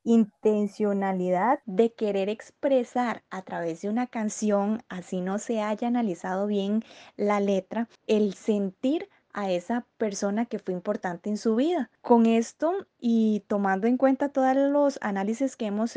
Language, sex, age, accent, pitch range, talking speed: Spanish, female, 20-39, Colombian, 185-235 Hz, 145 wpm